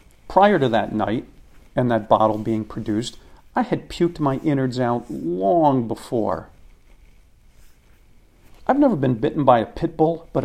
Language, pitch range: English, 115-150 Hz